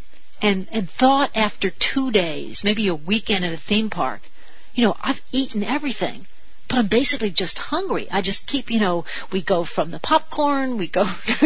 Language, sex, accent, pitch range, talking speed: English, female, American, 190-260 Hz, 185 wpm